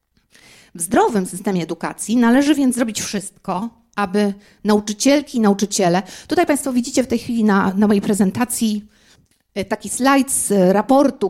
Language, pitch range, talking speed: Polish, 190-235 Hz, 140 wpm